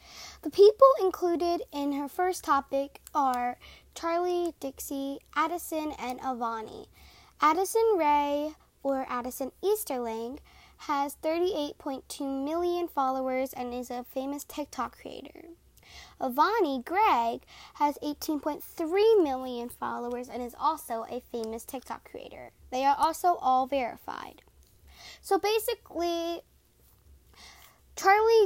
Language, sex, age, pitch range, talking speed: English, female, 10-29, 255-335 Hz, 105 wpm